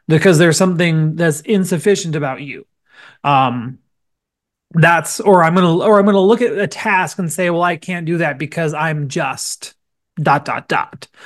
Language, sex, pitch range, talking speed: English, male, 150-195 Hz, 170 wpm